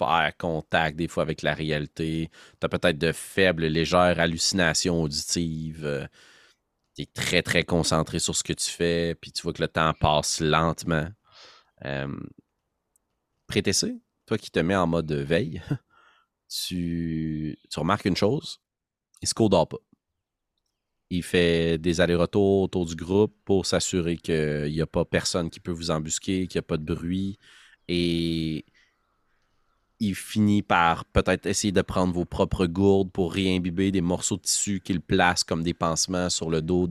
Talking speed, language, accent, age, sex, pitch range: 165 wpm, French, Canadian, 30-49, male, 80-95 Hz